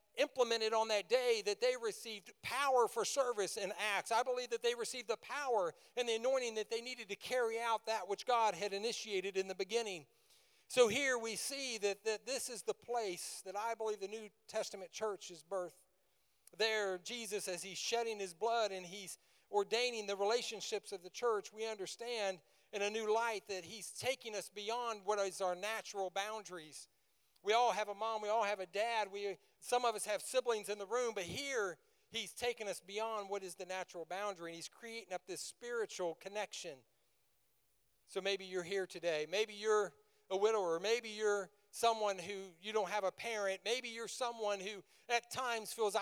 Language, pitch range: English, 200-235 Hz